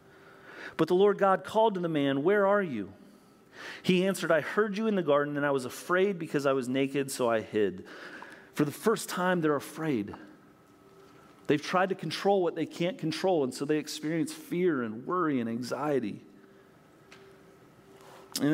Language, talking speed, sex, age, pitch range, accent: English, 175 wpm, male, 40-59, 130-180 Hz, American